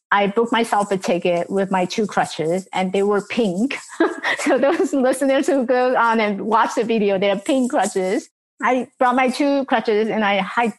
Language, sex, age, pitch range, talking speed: English, female, 30-49, 205-270 Hz, 195 wpm